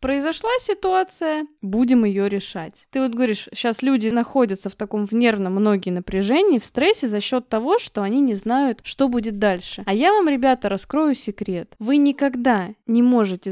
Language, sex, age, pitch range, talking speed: Russian, female, 20-39, 205-260 Hz, 175 wpm